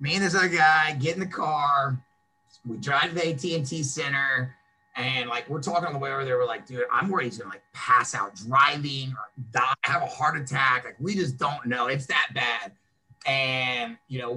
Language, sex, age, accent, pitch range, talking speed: English, male, 30-49, American, 125-155 Hz, 220 wpm